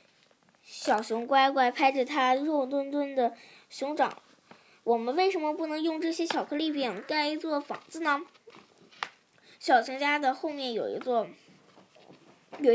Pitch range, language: 230-285 Hz, Chinese